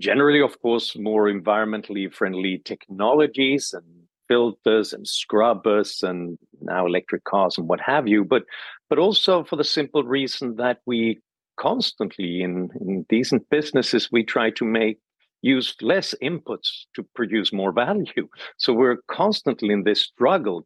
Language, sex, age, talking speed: English, male, 50-69, 145 wpm